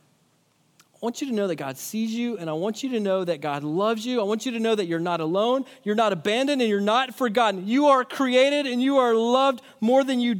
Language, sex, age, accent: English, male, 40-59, American